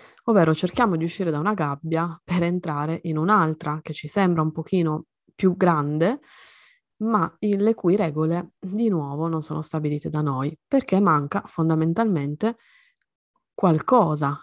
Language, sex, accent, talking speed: Italian, female, native, 135 wpm